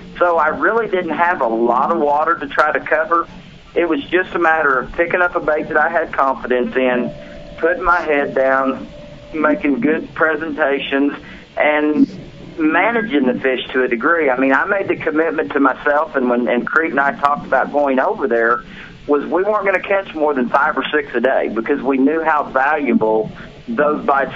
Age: 40-59